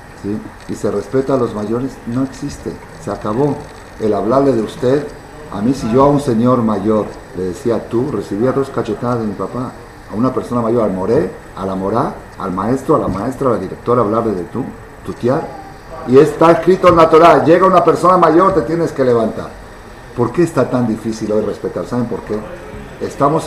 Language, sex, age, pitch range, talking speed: Spanish, male, 50-69, 110-135 Hz, 200 wpm